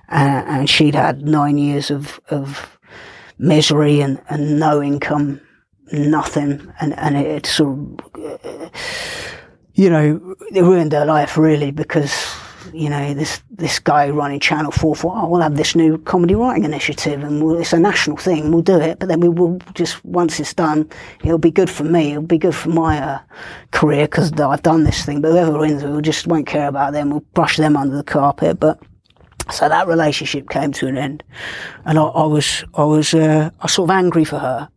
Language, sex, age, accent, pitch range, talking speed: English, female, 30-49, British, 145-165 Hz, 200 wpm